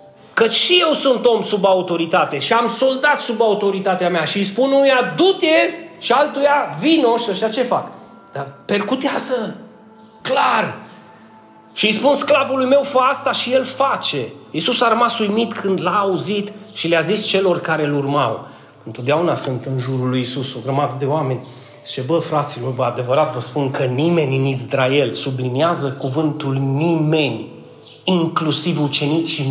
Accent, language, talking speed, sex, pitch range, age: native, Romanian, 155 wpm, male, 140-230 Hz, 30-49